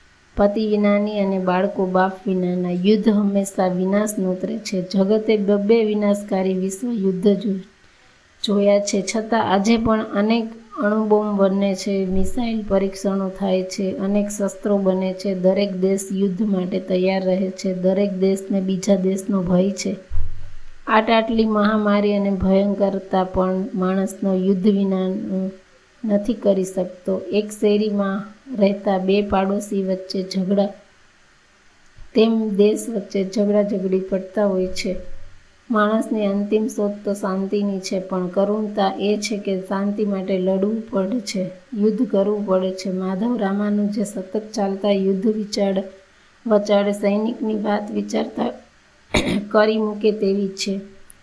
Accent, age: native, 20-39